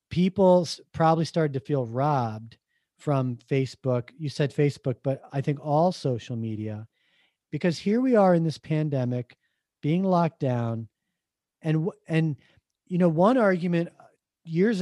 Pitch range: 130-165 Hz